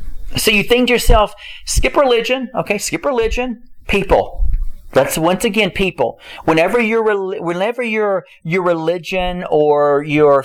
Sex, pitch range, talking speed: male, 155-210 Hz, 130 wpm